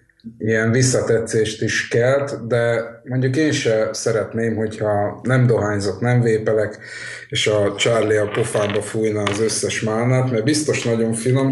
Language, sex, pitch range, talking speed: Hungarian, male, 105-140 Hz, 140 wpm